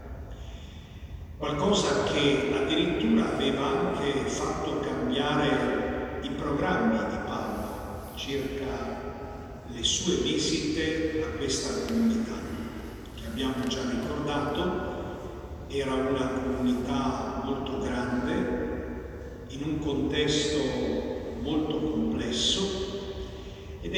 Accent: native